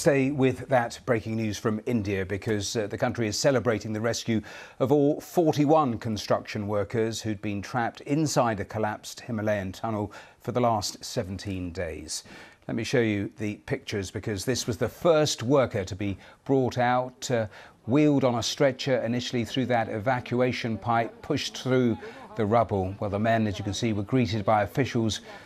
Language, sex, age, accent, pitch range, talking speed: English, male, 40-59, British, 105-125 Hz, 175 wpm